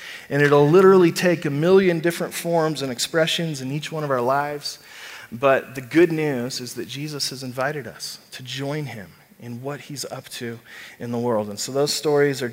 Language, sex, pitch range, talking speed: English, male, 135-170 Hz, 200 wpm